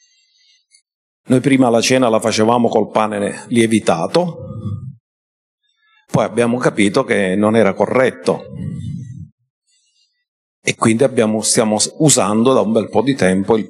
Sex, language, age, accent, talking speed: male, Italian, 50-69, native, 120 wpm